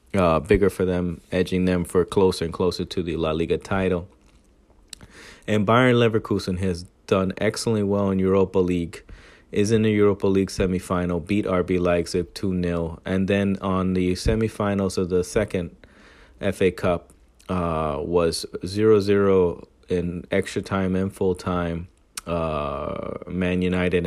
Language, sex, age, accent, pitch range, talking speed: English, male, 30-49, American, 90-95 Hz, 145 wpm